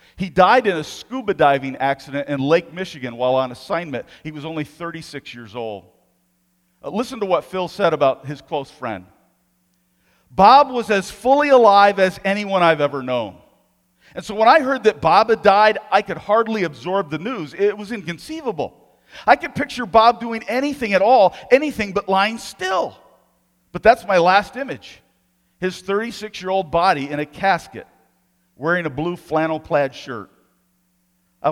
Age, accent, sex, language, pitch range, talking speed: 50-69, American, male, English, 135-215 Hz, 165 wpm